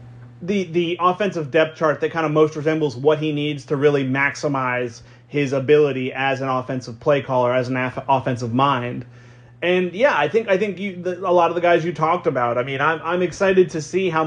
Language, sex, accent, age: English, male, American, 30-49